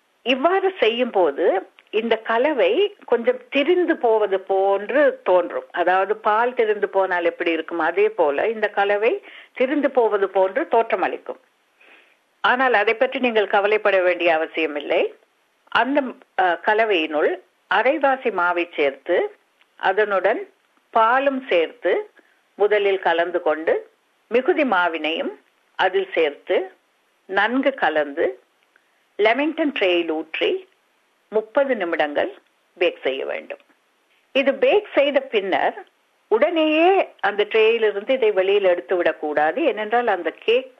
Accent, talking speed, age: native, 65 wpm, 50-69